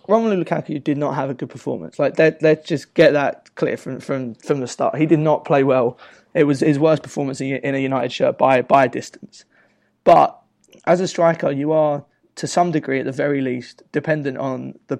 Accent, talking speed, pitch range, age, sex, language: British, 215 wpm, 145-175 Hz, 20-39, male, English